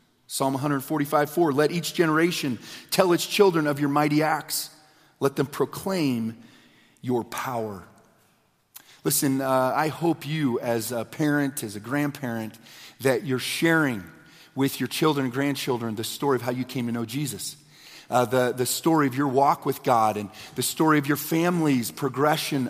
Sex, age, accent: male, 40-59, American